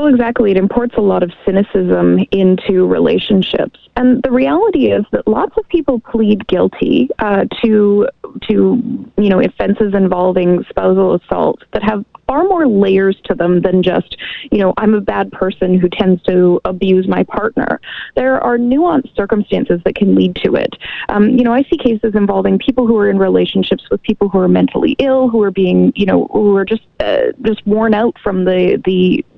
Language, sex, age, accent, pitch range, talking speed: English, female, 20-39, American, 190-245 Hz, 190 wpm